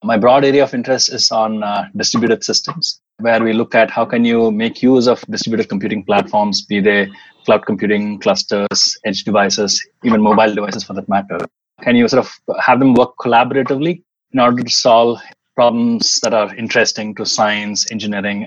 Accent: Indian